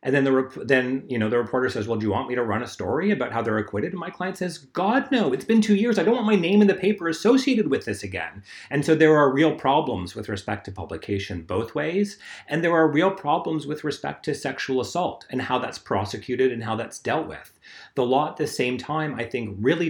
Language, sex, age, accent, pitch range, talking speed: English, male, 30-49, American, 105-150 Hz, 255 wpm